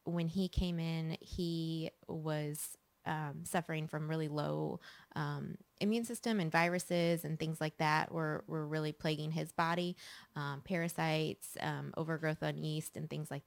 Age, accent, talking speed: 20-39, American, 155 wpm